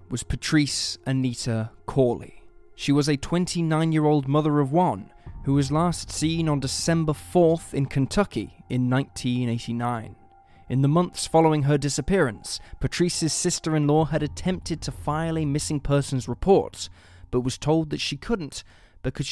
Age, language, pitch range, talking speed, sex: 20-39, English, 120-155 Hz, 140 wpm, male